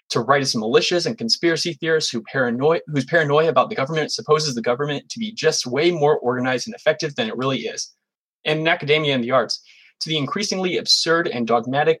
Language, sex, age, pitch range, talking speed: English, male, 20-39, 120-165 Hz, 200 wpm